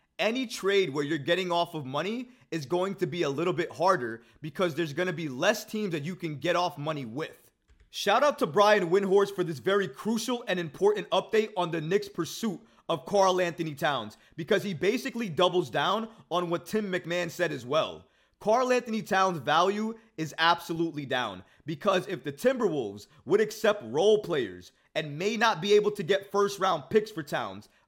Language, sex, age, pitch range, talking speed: English, male, 20-39, 165-210 Hz, 190 wpm